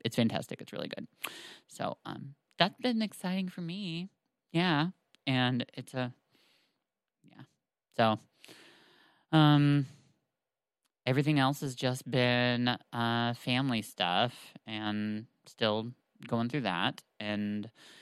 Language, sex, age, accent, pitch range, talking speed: English, male, 20-39, American, 115-145 Hz, 110 wpm